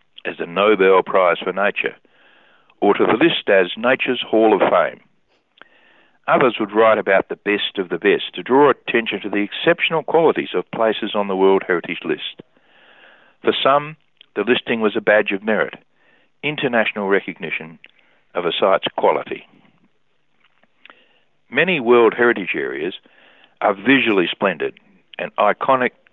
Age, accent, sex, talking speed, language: 60-79, Australian, male, 140 wpm, English